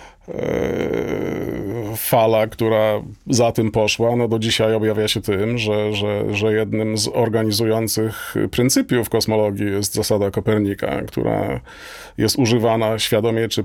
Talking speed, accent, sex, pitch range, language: 120 wpm, native, male, 100-115 Hz, Polish